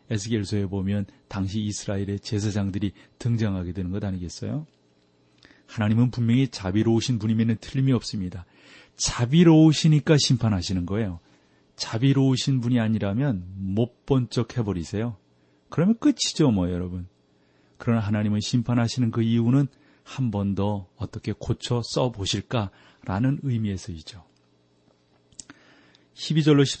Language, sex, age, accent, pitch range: Korean, male, 40-59, native, 100-125 Hz